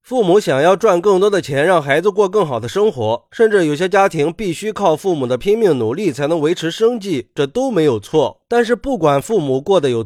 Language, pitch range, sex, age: Chinese, 135-195 Hz, male, 20-39